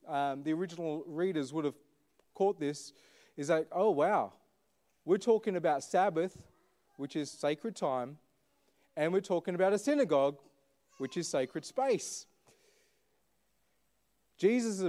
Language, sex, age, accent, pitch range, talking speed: English, male, 30-49, Australian, 150-210 Hz, 130 wpm